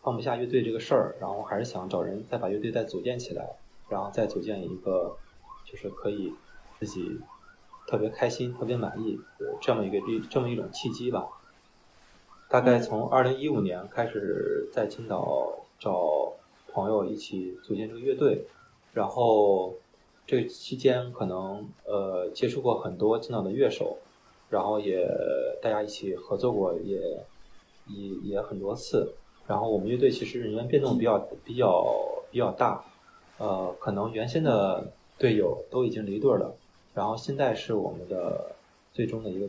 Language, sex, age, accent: Chinese, male, 20-39, native